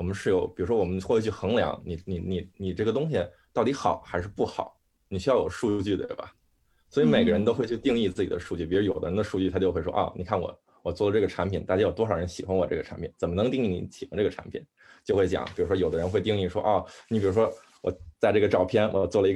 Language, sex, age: Chinese, male, 20-39